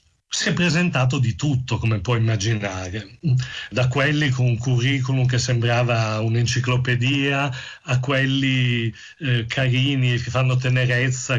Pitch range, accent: 120-155 Hz, native